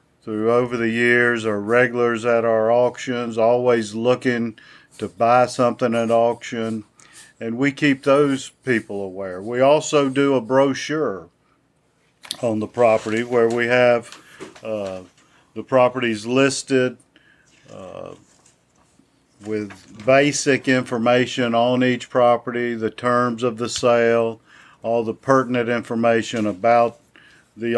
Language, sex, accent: English, male, American